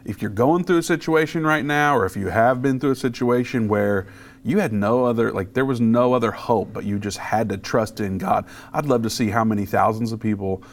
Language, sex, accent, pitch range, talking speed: English, male, American, 105-125 Hz, 245 wpm